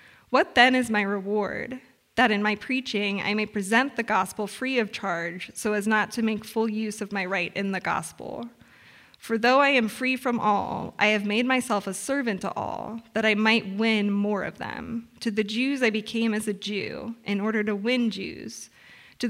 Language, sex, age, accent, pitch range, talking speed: English, female, 20-39, American, 205-235 Hz, 205 wpm